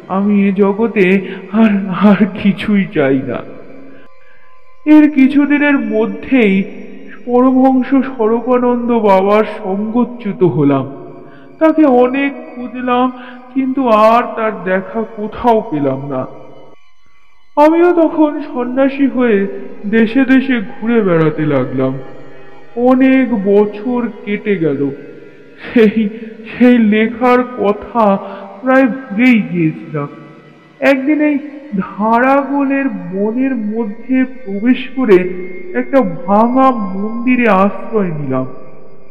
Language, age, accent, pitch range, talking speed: Bengali, 50-69, native, 200-255 Hz, 35 wpm